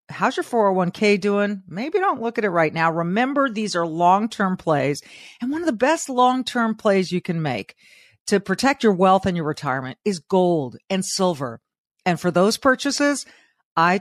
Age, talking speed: 40-59, 180 wpm